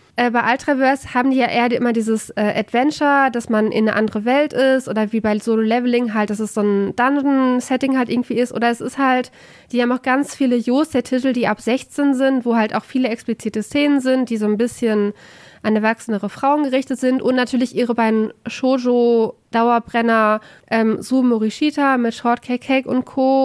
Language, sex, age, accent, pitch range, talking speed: German, female, 20-39, German, 225-265 Hz, 195 wpm